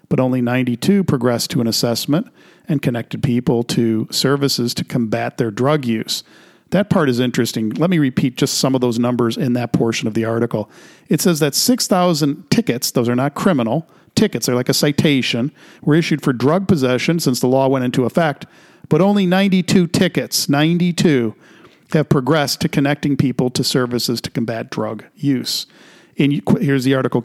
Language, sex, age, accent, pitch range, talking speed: English, male, 50-69, American, 125-165 Hz, 175 wpm